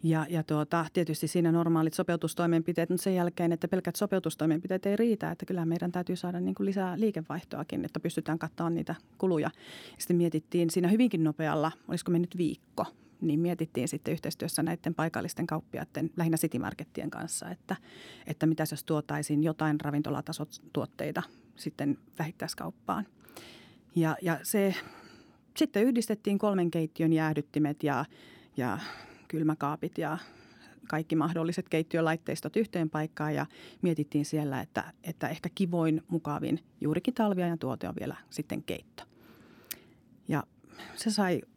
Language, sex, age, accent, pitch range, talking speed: Finnish, female, 40-59, native, 155-180 Hz, 135 wpm